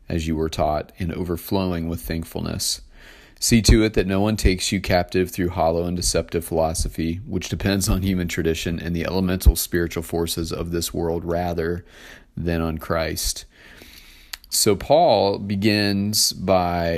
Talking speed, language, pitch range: 150 wpm, English, 85-100 Hz